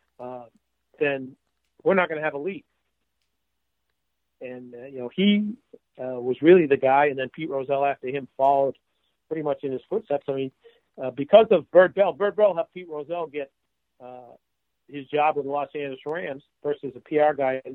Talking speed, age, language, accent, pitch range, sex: 195 wpm, 50-69, English, American, 130-165 Hz, male